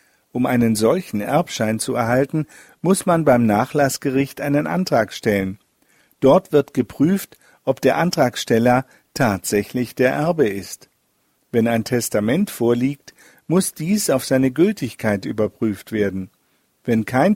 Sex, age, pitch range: male, 50-69, 115-150 Hz